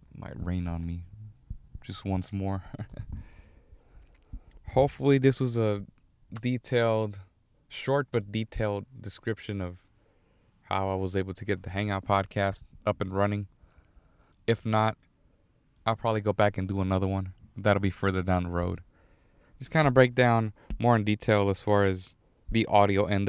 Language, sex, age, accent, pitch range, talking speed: English, male, 20-39, American, 95-115 Hz, 150 wpm